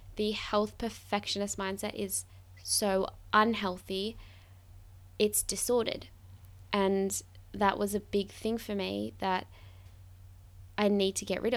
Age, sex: 10-29, female